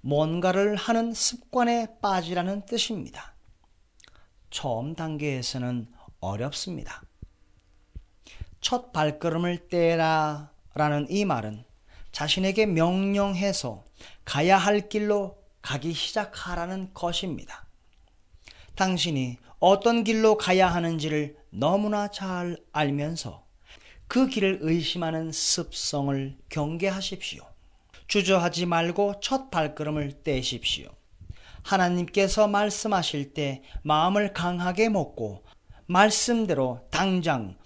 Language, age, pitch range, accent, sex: Korean, 40-59, 145-205 Hz, native, male